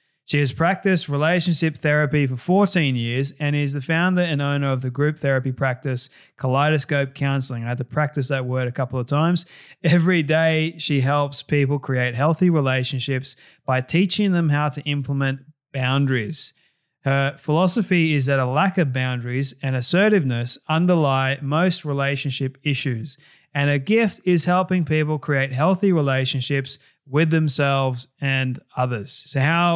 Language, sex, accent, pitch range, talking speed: English, male, Australian, 135-155 Hz, 150 wpm